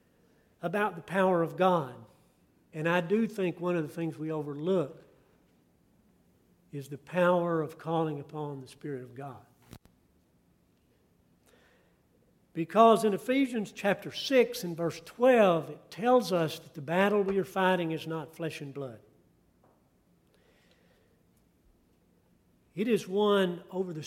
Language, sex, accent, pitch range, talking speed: English, male, American, 150-200 Hz, 130 wpm